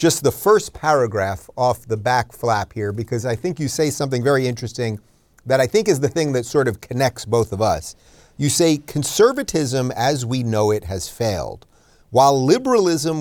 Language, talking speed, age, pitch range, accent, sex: English, 185 wpm, 40-59, 115-160 Hz, American, male